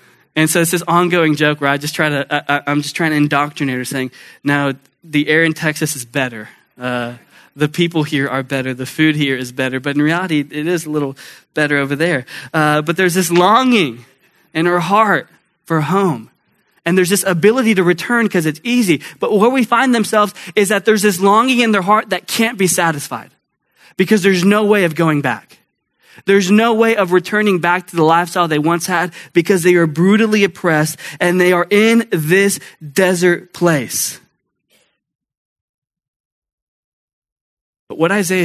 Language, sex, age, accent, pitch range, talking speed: English, male, 20-39, American, 140-185 Hz, 185 wpm